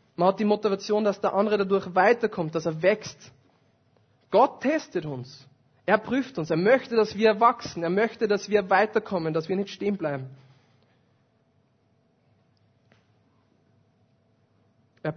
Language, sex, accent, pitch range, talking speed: German, male, German, 140-200 Hz, 135 wpm